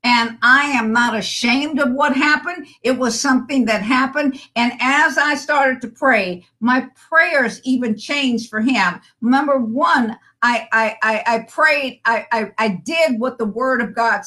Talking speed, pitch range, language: 170 wpm, 220-270 Hz, English